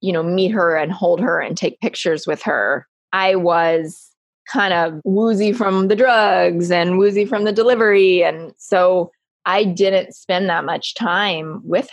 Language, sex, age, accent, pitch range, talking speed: English, female, 20-39, American, 180-245 Hz, 170 wpm